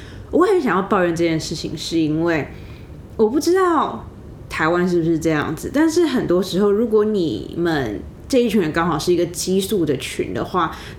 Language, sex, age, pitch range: Chinese, female, 20-39, 155-205 Hz